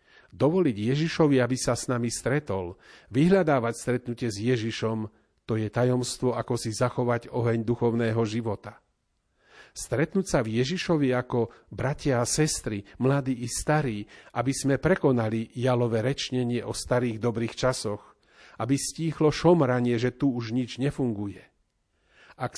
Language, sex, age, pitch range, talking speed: Slovak, male, 40-59, 110-135 Hz, 130 wpm